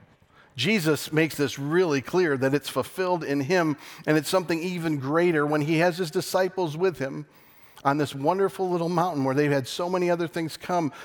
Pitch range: 120-155 Hz